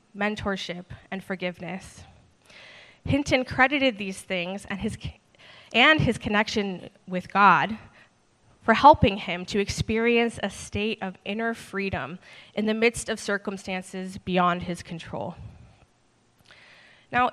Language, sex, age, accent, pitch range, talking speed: English, female, 20-39, American, 190-235 Hz, 115 wpm